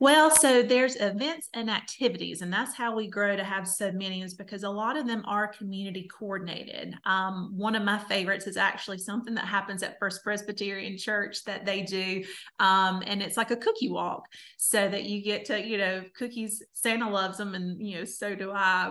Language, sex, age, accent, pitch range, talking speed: English, female, 30-49, American, 195-220 Hz, 200 wpm